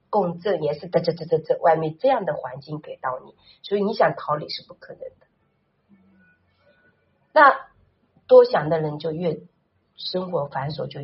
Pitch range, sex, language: 160-215 Hz, female, Chinese